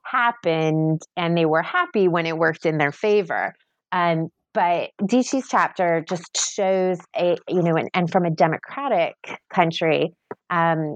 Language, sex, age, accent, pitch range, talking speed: English, female, 30-49, American, 155-185 Hz, 150 wpm